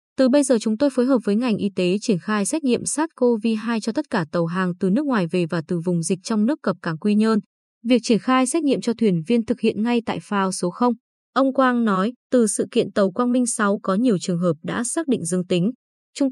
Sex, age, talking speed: female, 20-39, 255 wpm